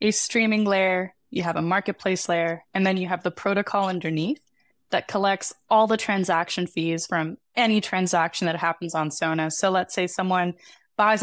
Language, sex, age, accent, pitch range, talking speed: English, female, 10-29, American, 175-215 Hz, 175 wpm